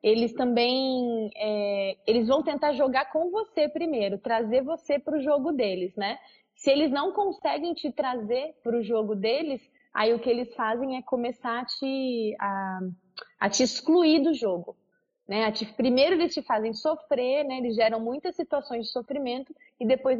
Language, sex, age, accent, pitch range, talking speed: Portuguese, female, 20-39, Brazilian, 225-270 Hz, 175 wpm